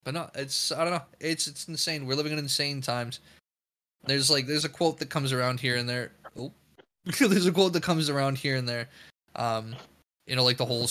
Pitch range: 130-155 Hz